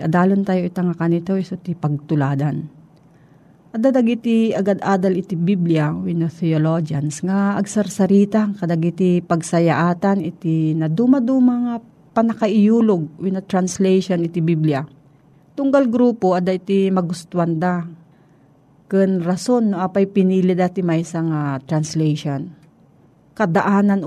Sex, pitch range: female, 165-210 Hz